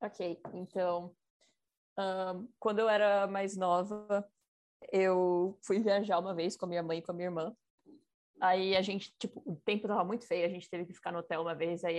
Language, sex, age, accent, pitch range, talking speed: Portuguese, female, 20-39, Brazilian, 170-205 Hz, 205 wpm